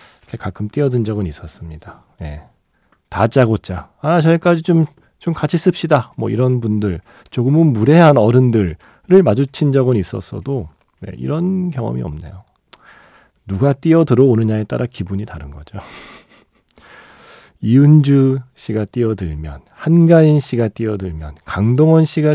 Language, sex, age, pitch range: Korean, male, 40-59, 95-145 Hz